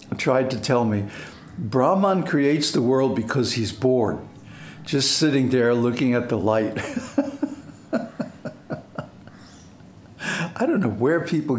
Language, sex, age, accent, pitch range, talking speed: English, male, 60-79, American, 115-165 Hz, 120 wpm